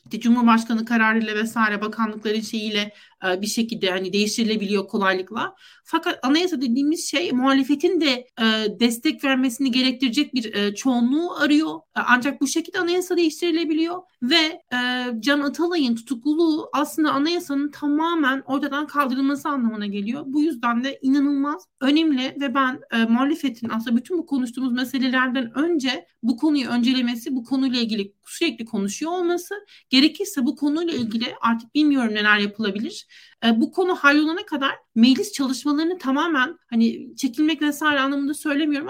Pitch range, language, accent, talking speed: 230-290 Hz, Turkish, native, 125 wpm